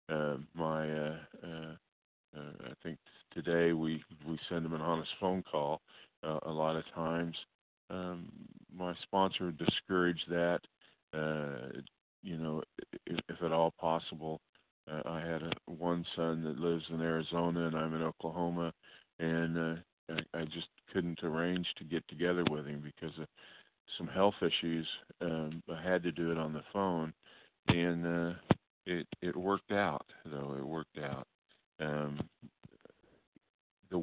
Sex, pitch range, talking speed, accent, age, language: male, 75-85 Hz, 155 wpm, American, 50-69, English